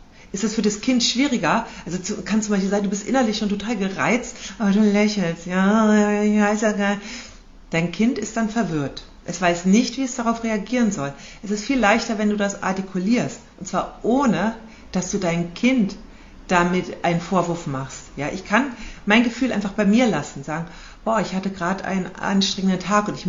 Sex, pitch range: female, 175-220 Hz